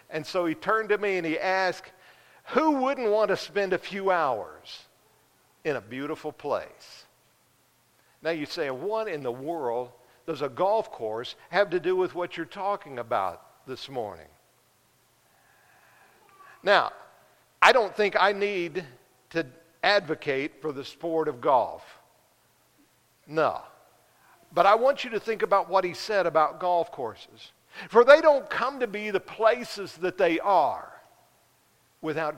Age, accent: 50-69, American